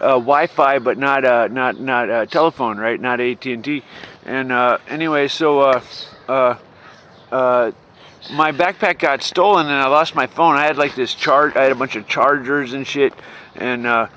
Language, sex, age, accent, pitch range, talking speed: English, male, 50-69, American, 130-160 Hz, 180 wpm